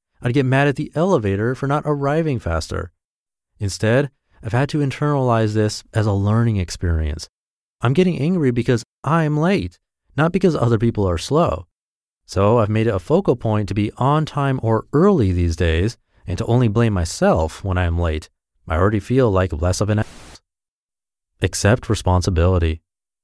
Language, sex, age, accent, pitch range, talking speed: English, male, 30-49, American, 95-140 Hz, 170 wpm